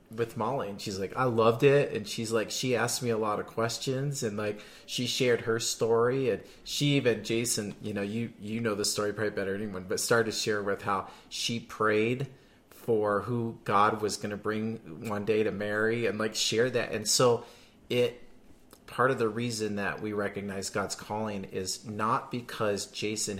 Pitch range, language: 100-115 Hz, English